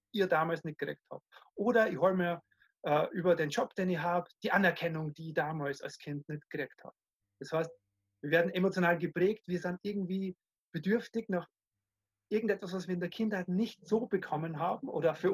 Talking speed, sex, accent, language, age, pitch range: 190 wpm, male, German, German, 30-49, 150-185 Hz